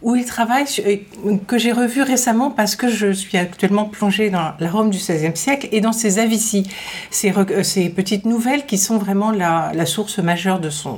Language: English